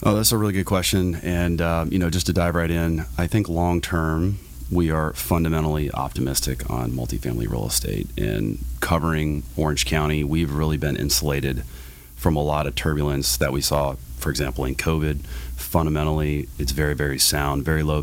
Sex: male